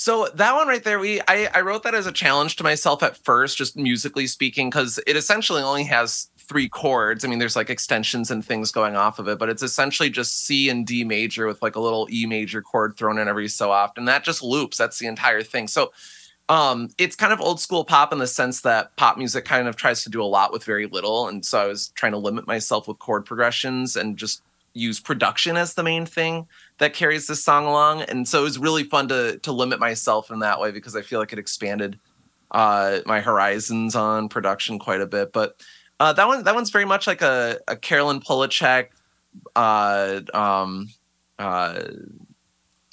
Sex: male